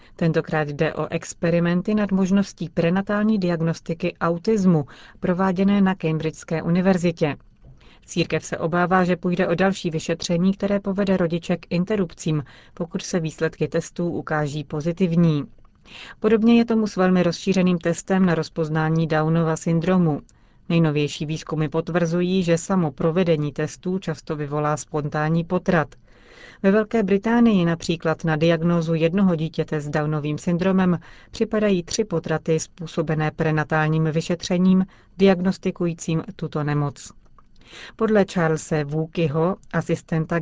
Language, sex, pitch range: Czech, female, 155-185 Hz